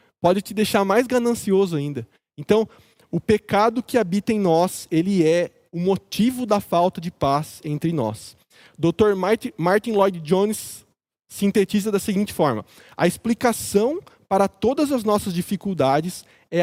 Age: 20-39